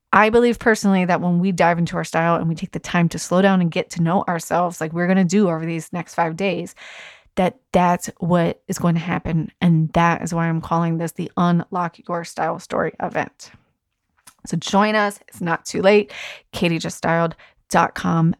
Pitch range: 170-195 Hz